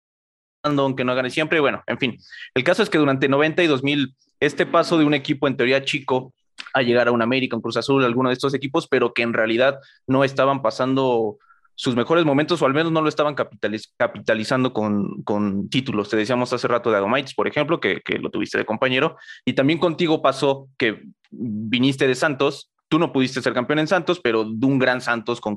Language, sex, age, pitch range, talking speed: Spanish, male, 20-39, 120-145 Hz, 210 wpm